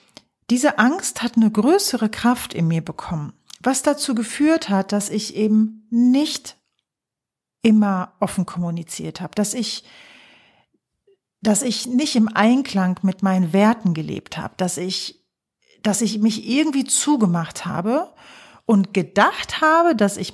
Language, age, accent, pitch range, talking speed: German, 40-59, German, 195-240 Hz, 135 wpm